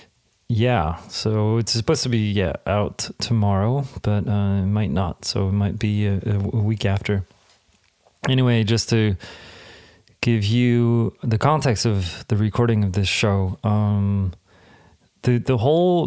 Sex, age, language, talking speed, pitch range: male, 30-49, English, 145 wpm, 100-115 Hz